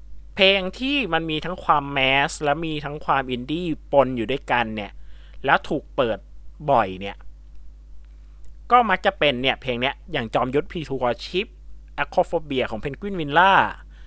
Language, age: Thai, 20-39